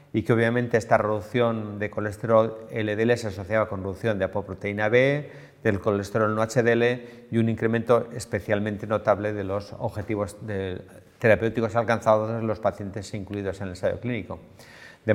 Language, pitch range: English, 105-125 Hz